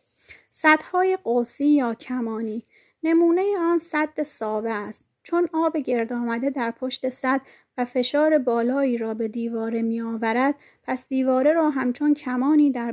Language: Persian